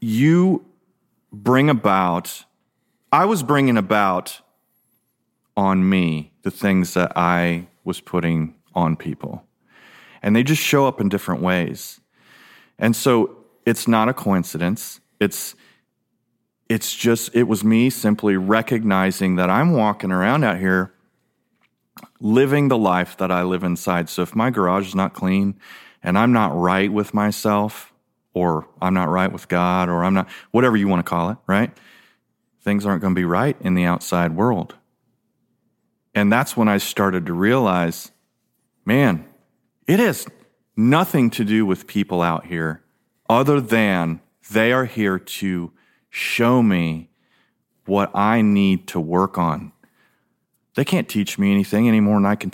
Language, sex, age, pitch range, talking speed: English, male, 30-49, 90-115 Hz, 150 wpm